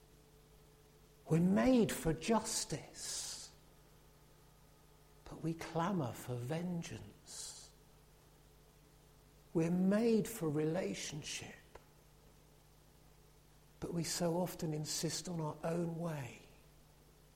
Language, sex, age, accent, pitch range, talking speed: English, male, 50-69, British, 145-180 Hz, 75 wpm